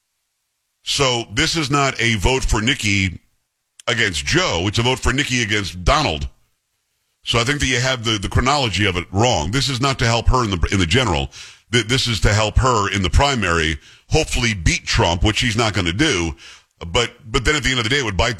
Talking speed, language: 225 wpm, English